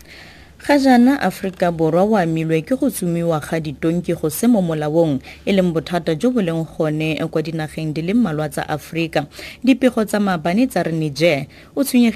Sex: female